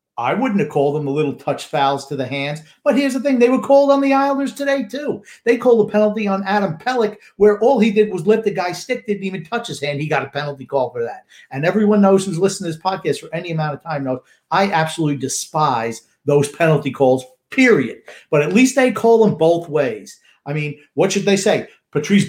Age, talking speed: 50-69, 235 wpm